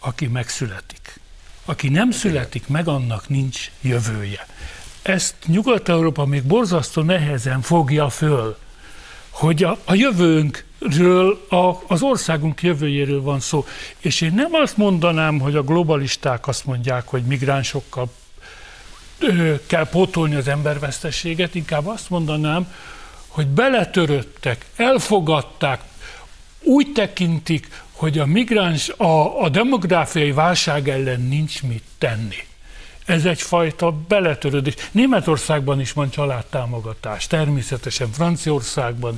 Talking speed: 105 wpm